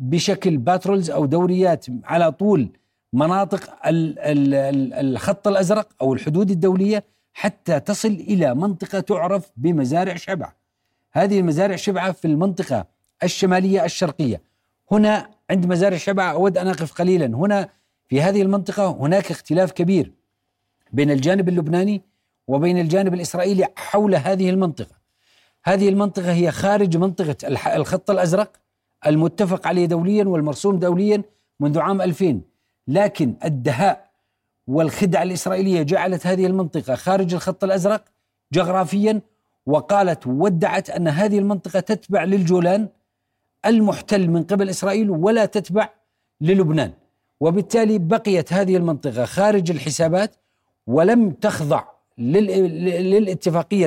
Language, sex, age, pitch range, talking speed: Arabic, male, 40-59, 155-200 Hz, 110 wpm